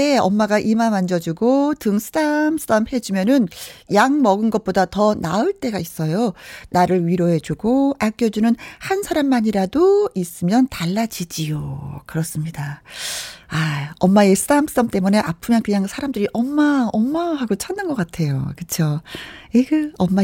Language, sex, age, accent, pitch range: Korean, female, 40-59, native, 180-265 Hz